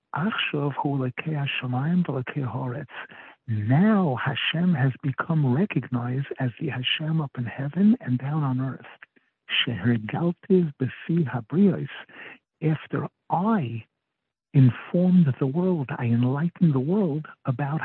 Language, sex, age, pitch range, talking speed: English, male, 60-79, 125-160 Hz, 85 wpm